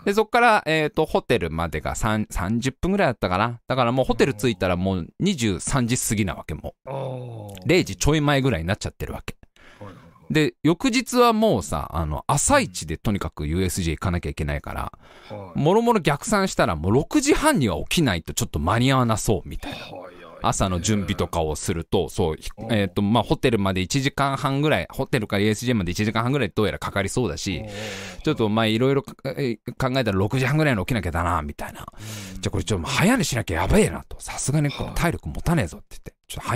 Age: 20-39